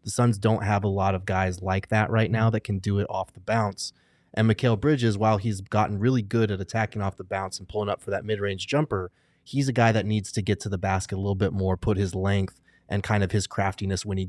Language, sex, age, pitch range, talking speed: English, male, 30-49, 95-115 Hz, 265 wpm